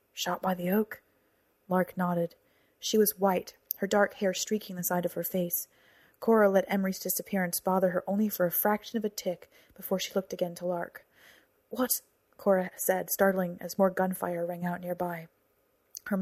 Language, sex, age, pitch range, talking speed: English, female, 30-49, 175-205 Hz, 180 wpm